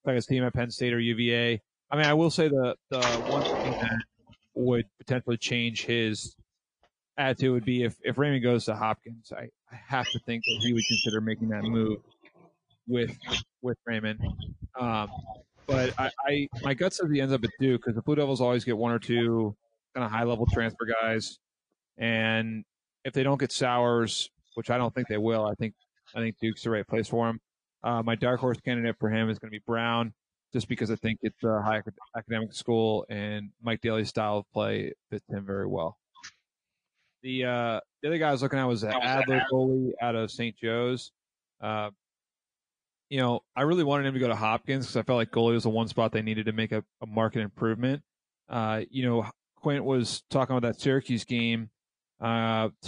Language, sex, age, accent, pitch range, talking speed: English, male, 30-49, American, 110-125 Hz, 205 wpm